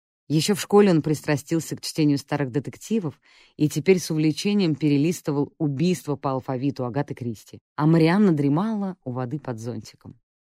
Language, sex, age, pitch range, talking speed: English, female, 20-39, 125-160 Hz, 150 wpm